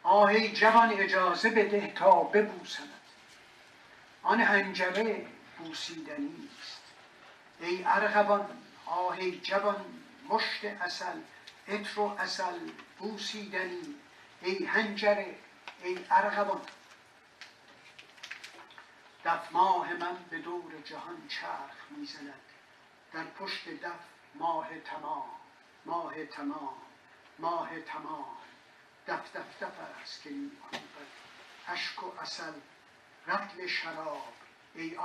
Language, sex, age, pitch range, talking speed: Persian, male, 60-79, 190-280 Hz, 85 wpm